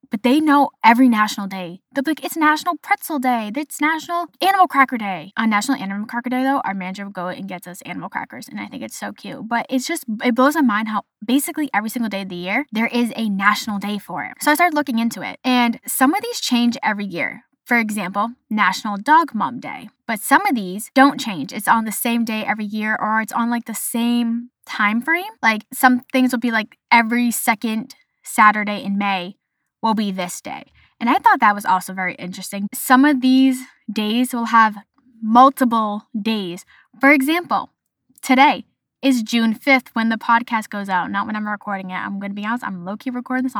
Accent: American